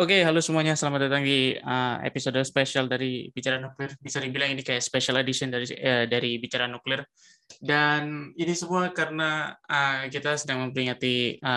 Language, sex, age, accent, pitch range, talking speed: Indonesian, male, 20-39, native, 125-145 Hz, 170 wpm